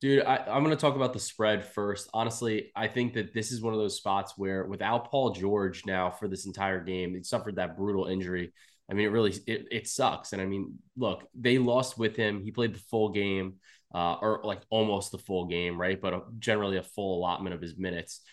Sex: male